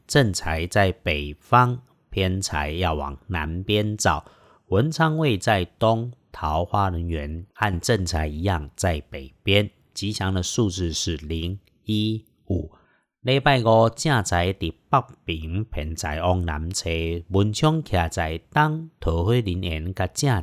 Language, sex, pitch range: Chinese, male, 85-120 Hz